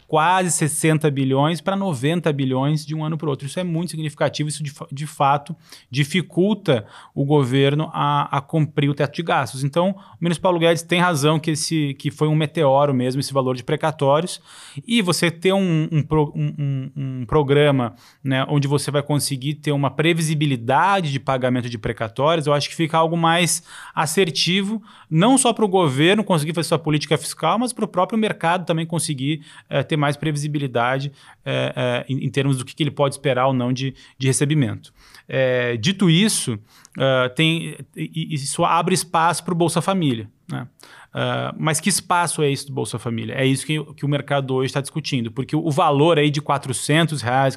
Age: 20-39